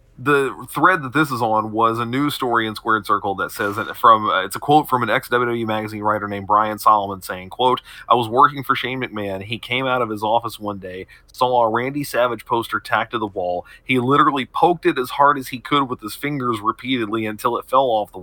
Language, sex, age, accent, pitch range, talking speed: English, male, 30-49, American, 110-130 Hz, 235 wpm